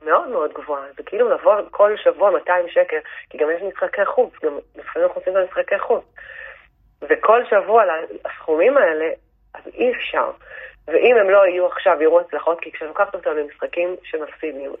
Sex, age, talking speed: female, 30-49, 160 wpm